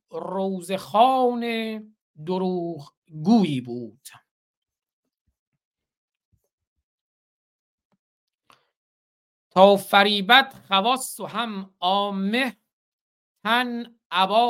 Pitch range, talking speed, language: 180-230 Hz, 50 wpm, Persian